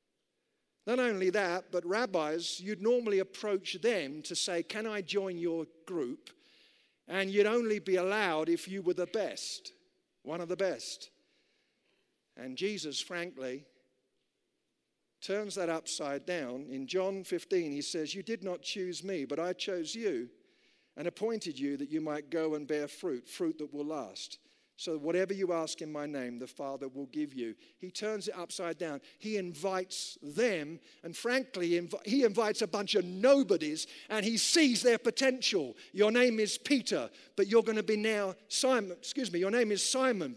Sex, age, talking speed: male, 50-69, 170 wpm